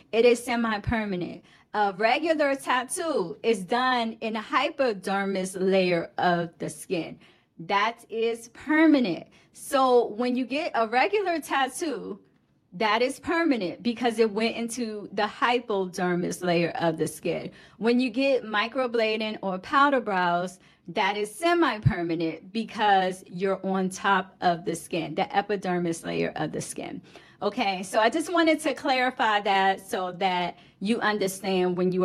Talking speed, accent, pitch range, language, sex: 140 wpm, American, 185-250 Hz, English, female